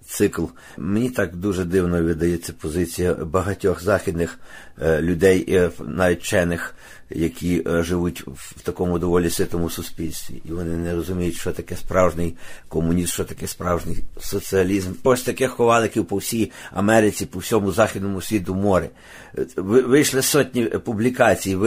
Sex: male